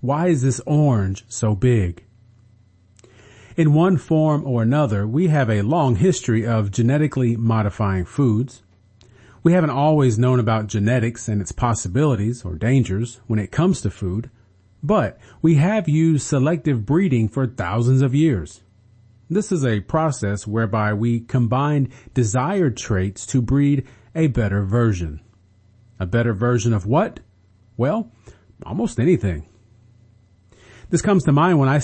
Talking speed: 140 wpm